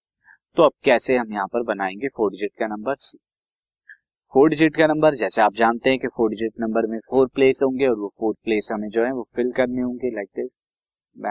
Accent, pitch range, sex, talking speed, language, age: native, 110-145 Hz, male, 220 wpm, Hindi, 30-49